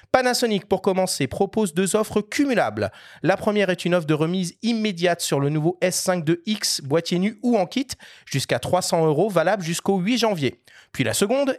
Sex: male